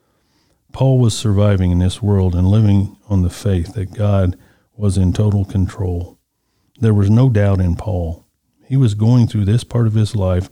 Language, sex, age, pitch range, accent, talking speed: English, male, 50-69, 95-115 Hz, American, 185 wpm